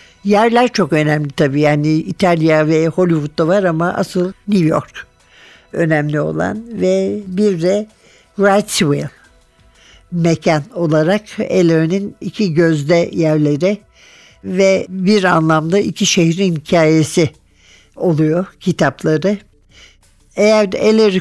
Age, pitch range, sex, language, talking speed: 60-79, 155-195 Hz, male, Turkish, 100 wpm